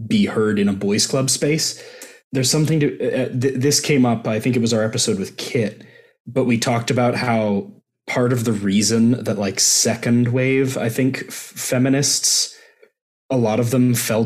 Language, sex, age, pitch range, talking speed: English, male, 20-39, 105-130 Hz, 190 wpm